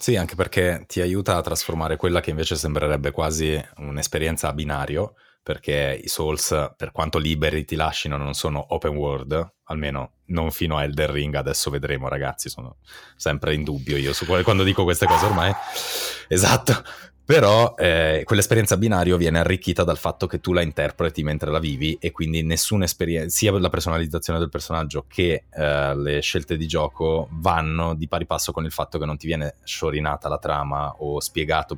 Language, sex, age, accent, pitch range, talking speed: Italian, male, 20-39, native, 75-85 Hz, 180 wpm